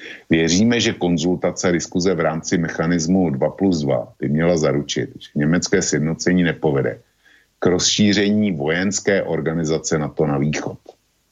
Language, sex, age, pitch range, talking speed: Slovak, male, 50-69, 70-85 Hz, 135 wpm